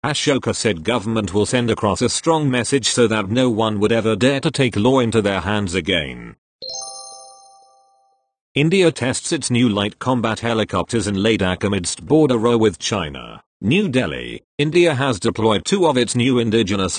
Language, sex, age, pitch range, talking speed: English, male, 40-59, 100-130 Hz, 165 wpm